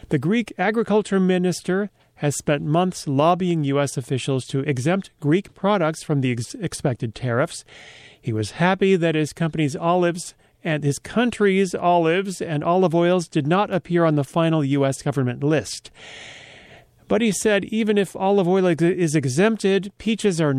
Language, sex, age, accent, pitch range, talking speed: English, male, 40-59, American, 135-180 Hz, 150 wpm